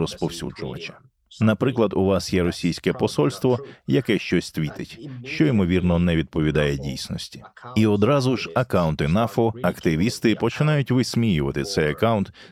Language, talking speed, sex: Ukrainian, 120 wpm, male